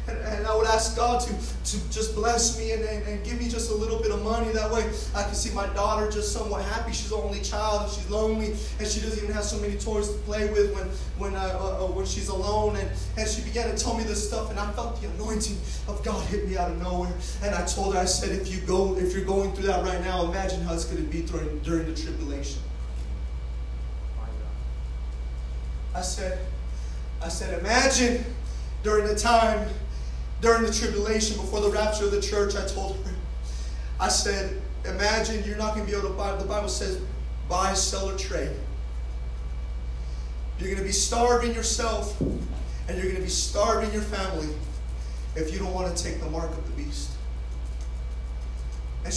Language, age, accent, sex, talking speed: English, 20-39, American, male, 205 wpm